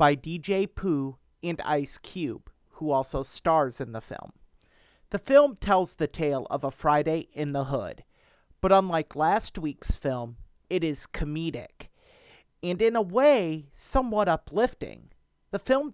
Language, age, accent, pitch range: English, 40-59, American, 140-195 Hz